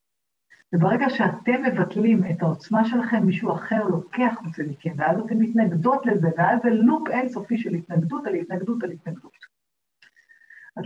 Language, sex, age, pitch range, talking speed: Hebrew, female, 50-69, 170-210 Hz, 140 wpm